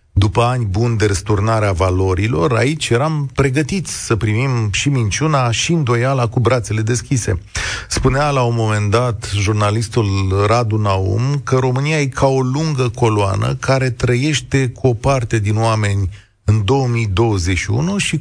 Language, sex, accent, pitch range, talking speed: Romanian, male, native, 105-135 Hz, 145 wpm